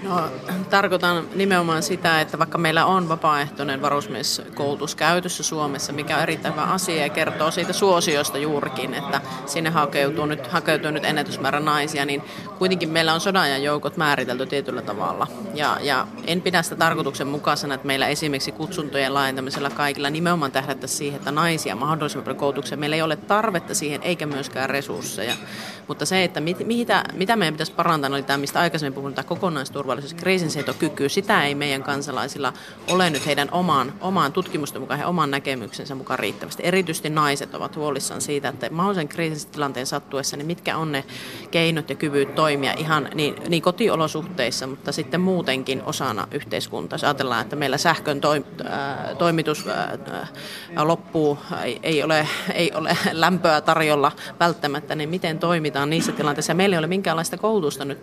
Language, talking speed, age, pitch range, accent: Finnish, 160 wpm, 30-49, 140-170 Hz, native